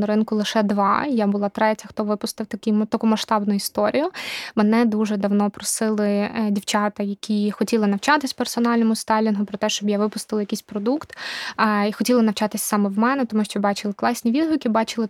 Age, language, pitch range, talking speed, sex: 20-39, Ukrainian, 210-235 Hz, 165 wpm, female